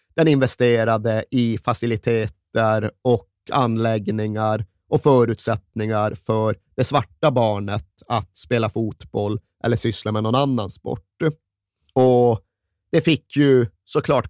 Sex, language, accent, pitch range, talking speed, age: male, Swedish, native, 105-130 Hz, 110 wpm, 30-49